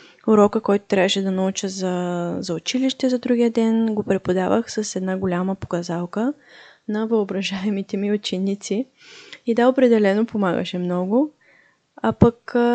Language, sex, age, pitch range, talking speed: Bulgarian, female, 20-39, 190-235 Hz, 135 wpm